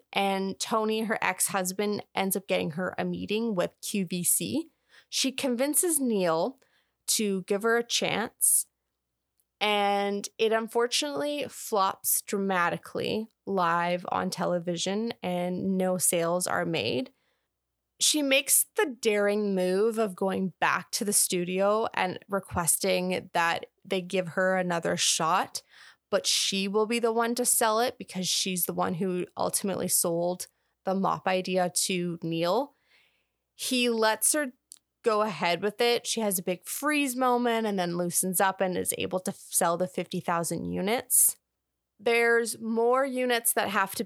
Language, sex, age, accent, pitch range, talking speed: English, female, 20-39, American, 185-230 Hz, 140 wpm